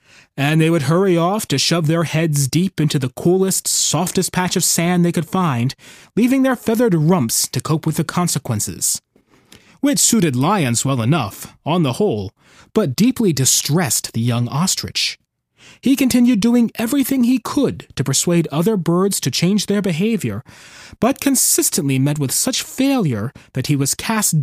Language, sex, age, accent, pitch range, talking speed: English, male, 30-49, American, 135-185 Hz, 165 wpm